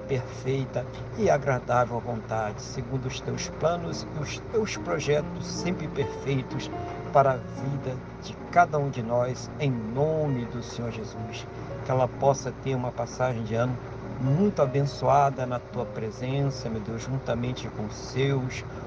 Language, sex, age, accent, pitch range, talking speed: Portuguese, male, 60-79, Brazilian, 125-145 Hz, 150 wpm